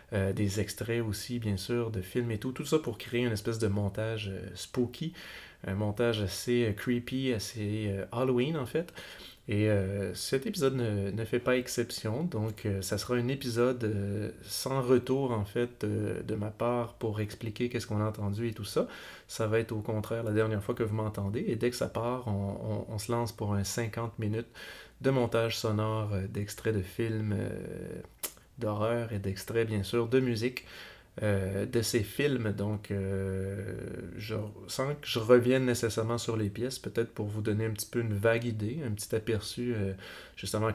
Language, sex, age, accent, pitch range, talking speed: French, male, 30-49, Canadian, 100-120 Hz, 195 wpm